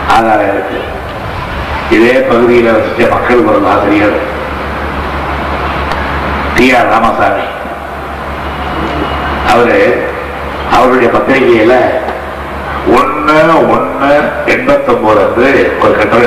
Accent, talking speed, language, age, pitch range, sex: native, 75 wpm, Tamil, 60-79, 70-120 Hz, male